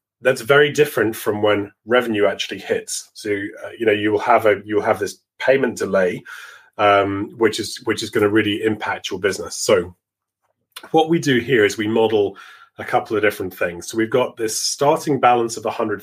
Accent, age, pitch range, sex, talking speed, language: British, 30-49, 105-160 Hz, male, 195 wpm, English